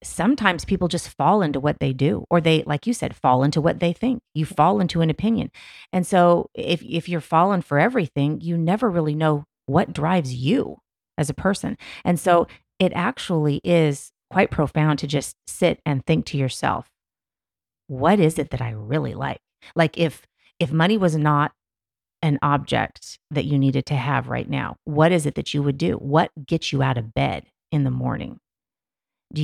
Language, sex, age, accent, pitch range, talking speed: English, female, 30-49, American, 140-170 Hz, 190 wpm